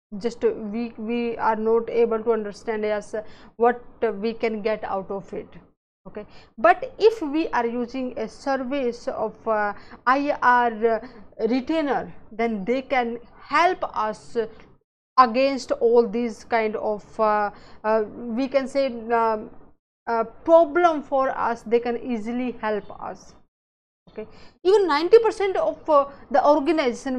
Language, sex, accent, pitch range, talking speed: English, female, Indian, 225-280 Hz, 130 wpm